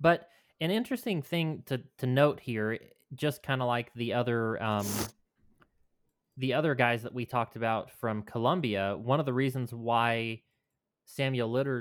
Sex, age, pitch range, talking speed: male, 20-39, 110-135 Hz, 140 wpm